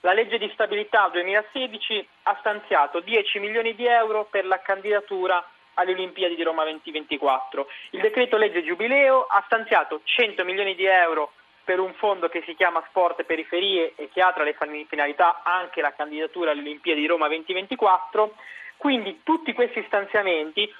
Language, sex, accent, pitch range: Italian, male, native, 175-235 Hz